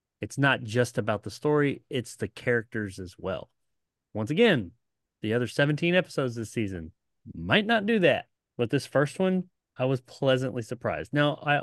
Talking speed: 170 wpm